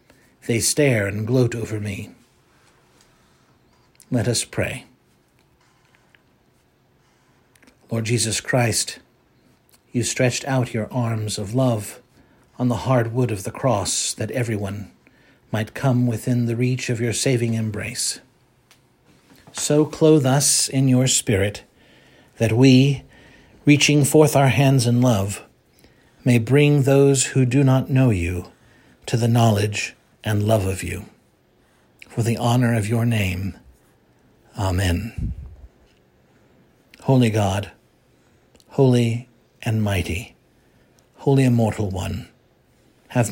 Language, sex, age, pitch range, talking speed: English, male, 60-79, 110-130 Hz, 115 wpm